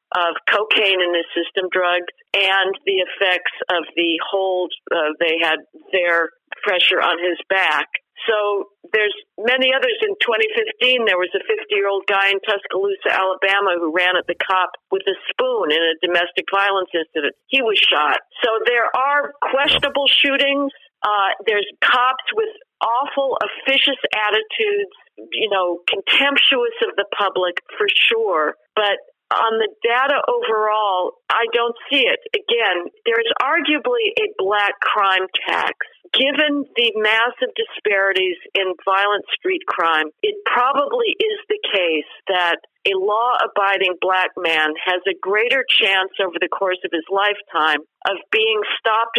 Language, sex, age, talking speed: English, female, 50-69, 145 wpm